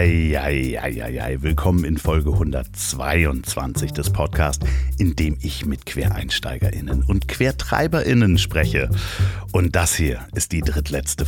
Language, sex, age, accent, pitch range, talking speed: German, male, 60-79, German, 80-100 Hz, 110 wpm